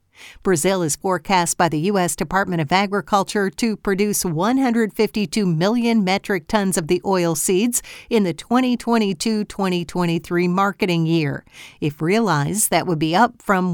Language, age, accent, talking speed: English, 50-69, American, 135 wpm